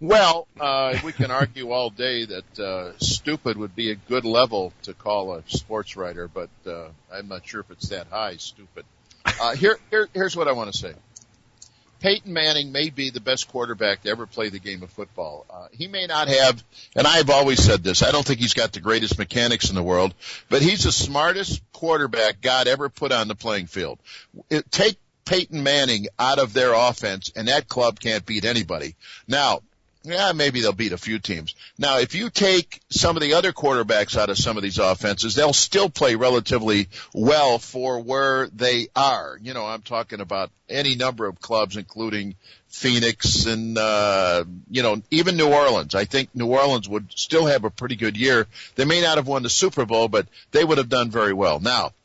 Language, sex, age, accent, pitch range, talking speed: English, male, 50-69, American, 110-140 Hz, 205 wpm